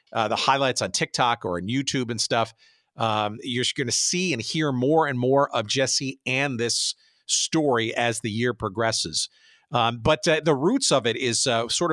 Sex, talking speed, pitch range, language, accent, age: male, 195 wpm, 115-145 Hz, English, American, 50-69